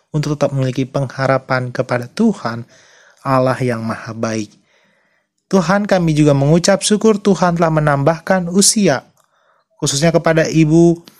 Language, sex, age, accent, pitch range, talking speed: Indonesian, male, 30-49, native, 140-175 Hz, 120 wpm